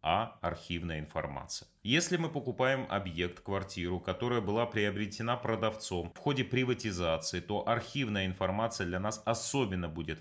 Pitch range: 90-115 Hz